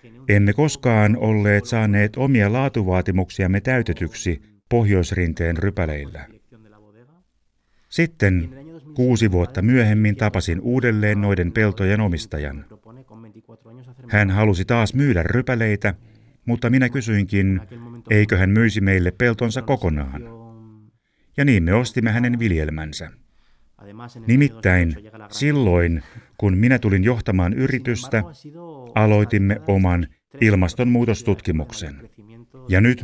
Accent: native